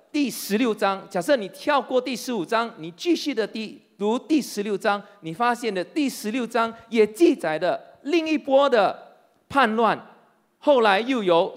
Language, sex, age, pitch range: Chinese, male, 40-59, 200-285 Hz